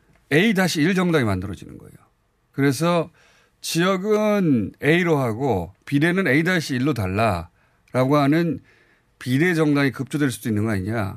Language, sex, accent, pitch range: Korean, male, native, 110-155 Hz